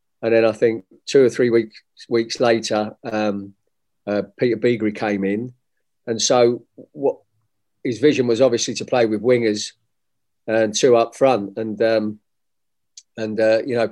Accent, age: British, 40-59